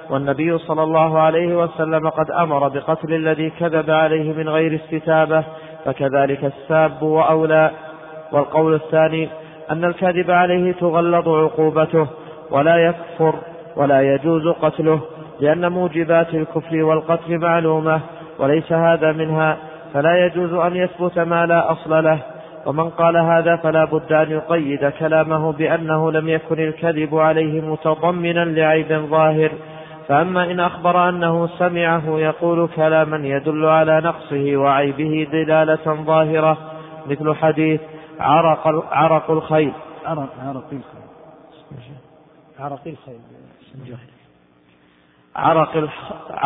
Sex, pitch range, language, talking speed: male, 155-165 Hz, Arabic, 105 wpm